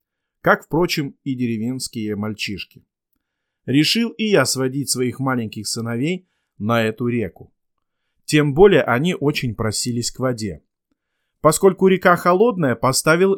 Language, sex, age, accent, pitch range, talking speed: Russian, male, 30-49, native, 120-160 Hz, 115 wpm